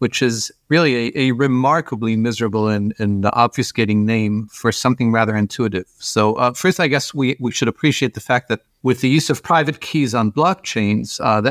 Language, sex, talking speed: English, male, 190 wpm